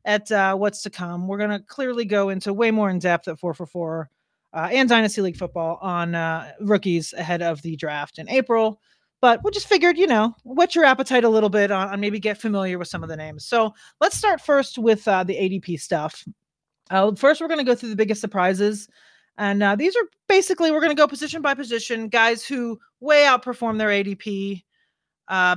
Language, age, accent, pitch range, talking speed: English, 30-49, American, 185-255 Hz, 210 wpm